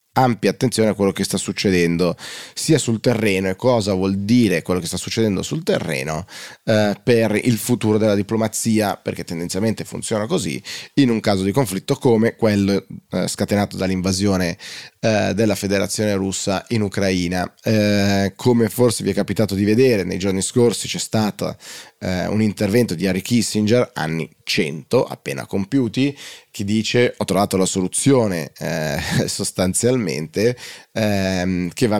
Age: 20-39